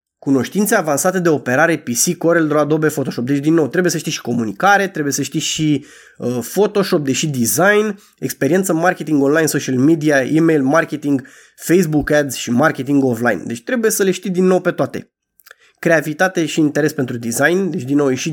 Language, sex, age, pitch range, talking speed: Romanian, male, 20-39, 140-190 Hz, 175 wpm